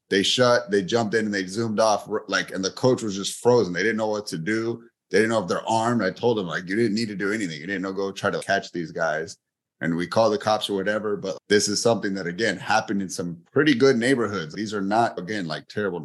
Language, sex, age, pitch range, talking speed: English, male, 30-49, 95-110 Hz, 270 wpm